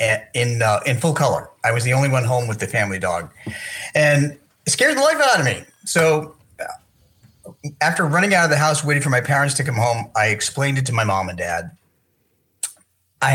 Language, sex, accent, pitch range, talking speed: English, male, American, 105-145 Hz, 210 wpm